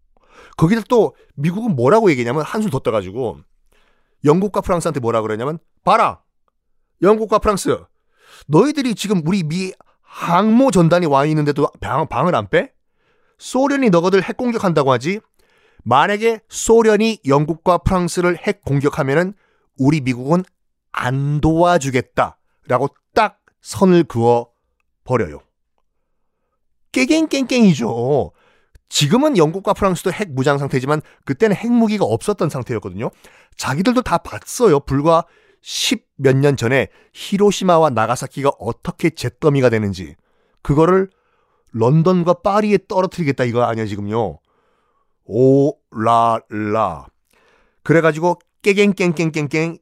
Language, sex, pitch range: Korean, male, 135-205 Hz